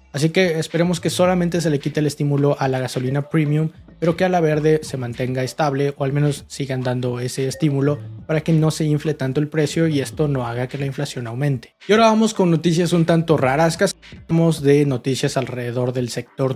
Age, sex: 20-39, male